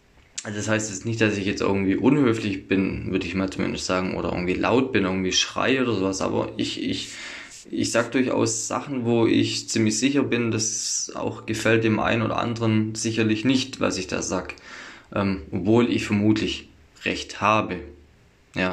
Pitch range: 100-115 Hz